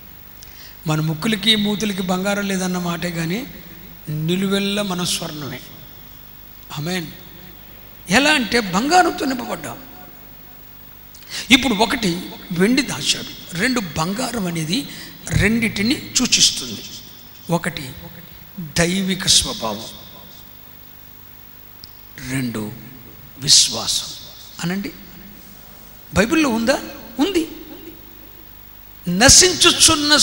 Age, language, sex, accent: 50-69, Telugu, male, native